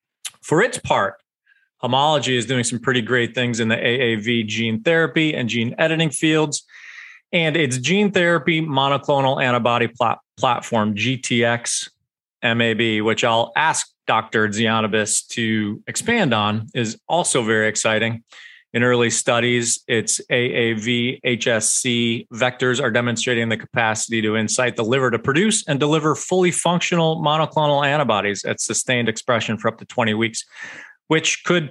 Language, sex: English, male